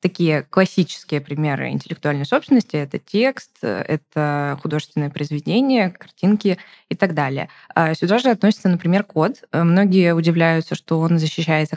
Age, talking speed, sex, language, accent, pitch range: 20-39, 120 wpm, female, Russian, native, 155-195 Hz